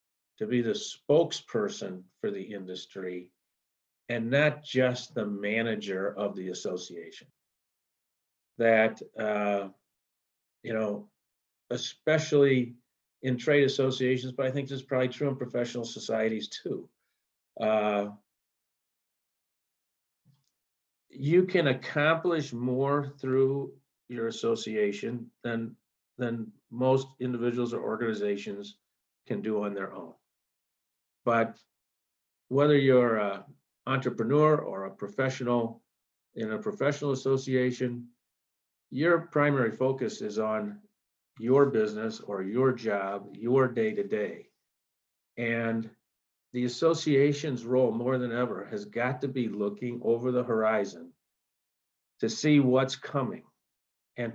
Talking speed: 110 wpm